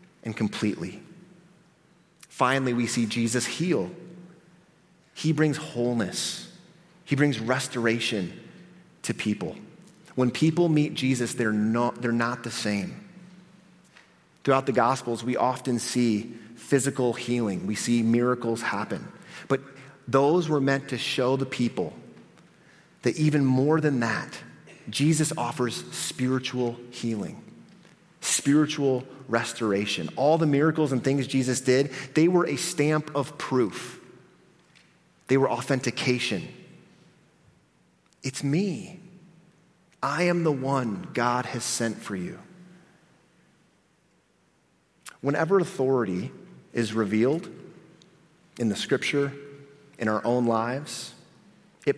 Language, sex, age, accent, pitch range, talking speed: English, male, 30-49, American, 120-175 Hz, 110 wpm